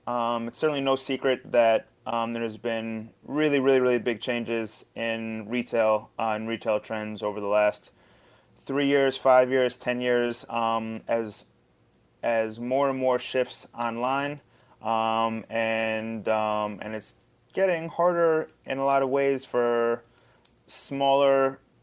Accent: American